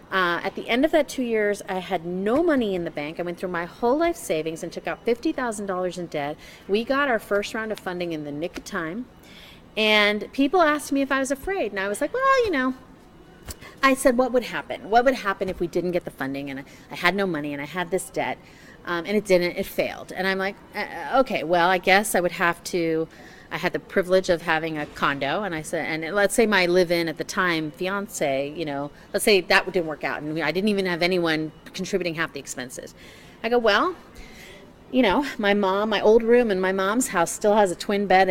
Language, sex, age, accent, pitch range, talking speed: English, female, 30-49, American, 175-245 Hz, 245 wpm